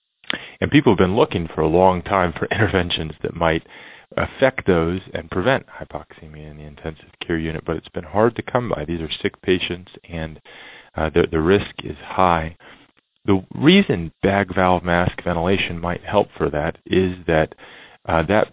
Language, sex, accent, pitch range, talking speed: English, male, American, 80-95 Hz, 180 wpm